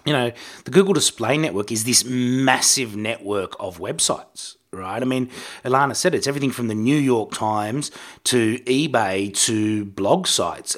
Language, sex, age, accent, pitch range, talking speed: English, male, 30-49, Australian, 105-130 Hz, 160 wpm